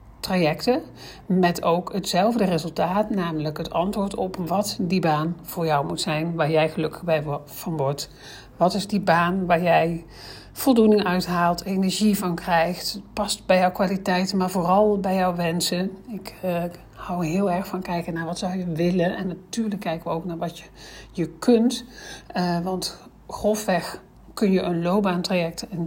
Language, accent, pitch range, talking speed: Dutch, Dutch, 170-195 Hz, 165 wpm